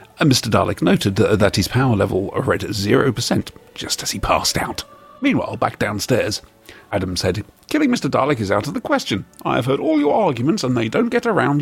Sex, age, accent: male, 50-69, British